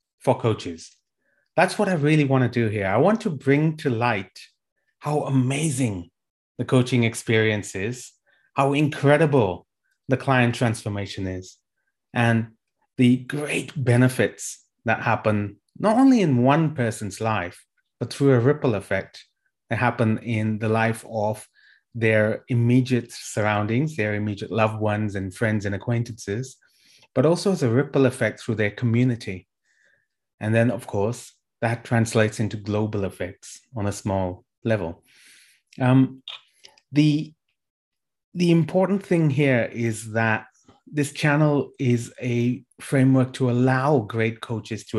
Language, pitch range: English, 110-135 Hz